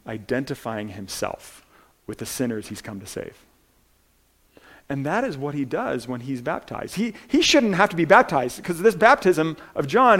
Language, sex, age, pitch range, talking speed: English, male, 40-59, 160-230 Hz, 175 wpm